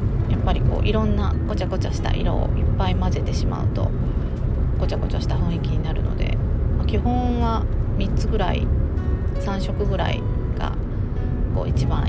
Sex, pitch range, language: female, 80-105 Hz, Japanese